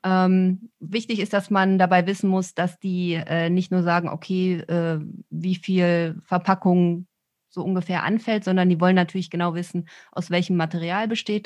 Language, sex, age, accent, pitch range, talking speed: German, female, 30-49, German, 165-185 Hz, 170 wpm